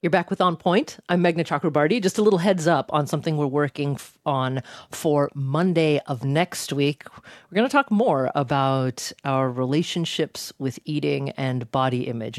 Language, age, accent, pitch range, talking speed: English, 40-59, American, 135-180 Hz, 180 wpm